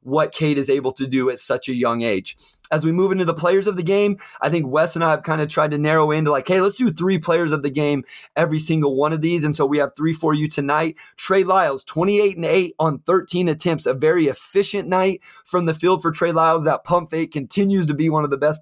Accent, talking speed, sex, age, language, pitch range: American, 265 wpm, male, 20-39, English, 145-170 Hz